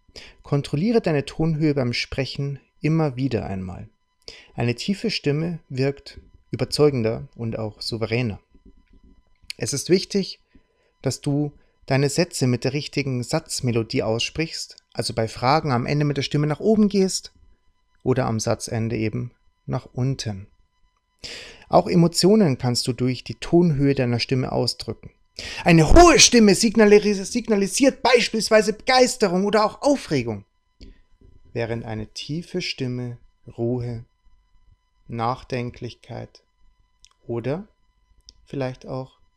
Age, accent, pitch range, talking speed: 30-49, German, 105-155 Hz, 110 wpm